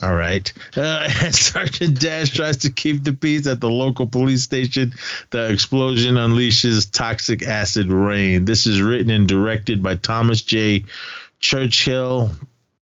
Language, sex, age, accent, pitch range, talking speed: English, male, 30-49, American, 95-125 Hz, 145 wpm